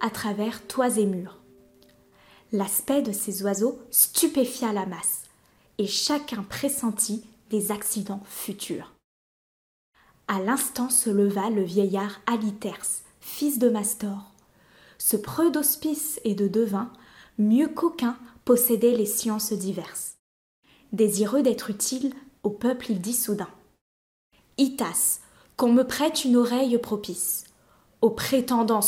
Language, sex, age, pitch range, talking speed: French, female, 20-39, 205-245 Hz, 125 wpm